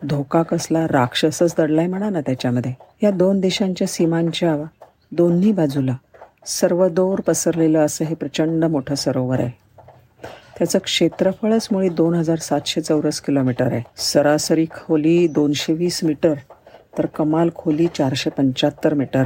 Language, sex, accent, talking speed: Marathi, female, native, 110 wpm